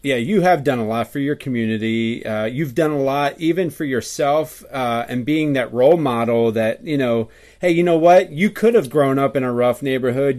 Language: English